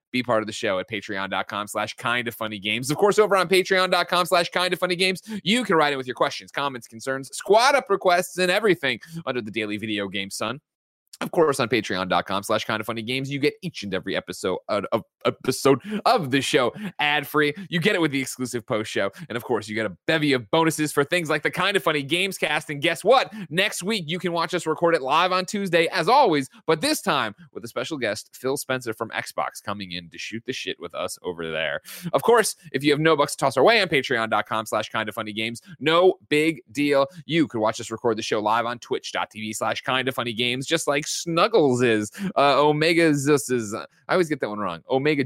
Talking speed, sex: 235 wpm, male